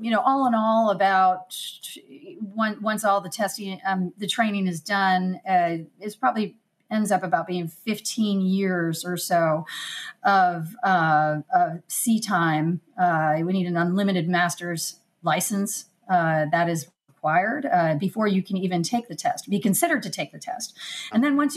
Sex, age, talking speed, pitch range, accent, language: female, 30-49, 165 wpm, 175-220 Hz, American, English